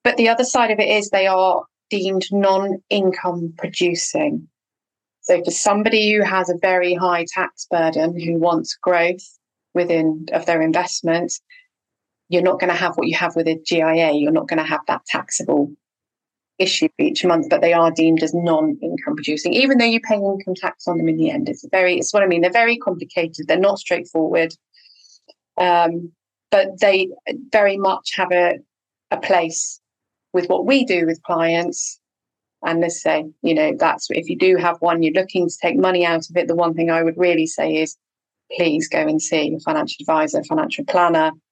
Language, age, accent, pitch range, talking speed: English, 30-49, British, 165-210 Hz, 190 wpm